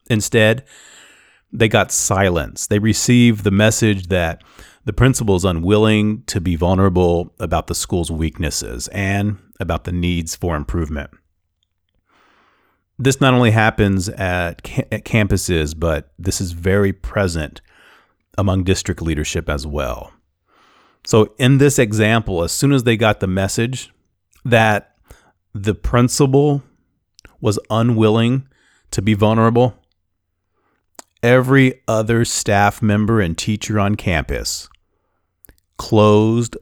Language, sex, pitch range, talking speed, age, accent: English, male, 90-110 Hz, 115 wpm, 30-49, American